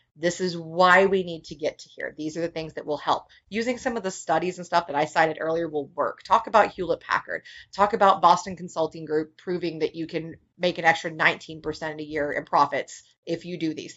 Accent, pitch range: American, 160-190 Hz